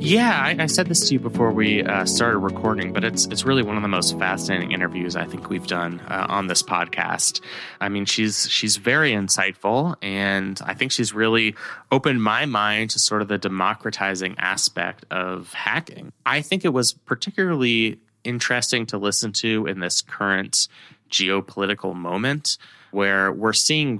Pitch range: 95-115 Hz